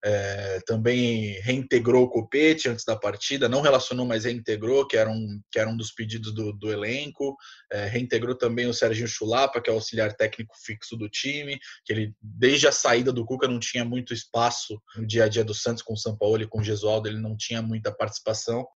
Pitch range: 110-130 Hz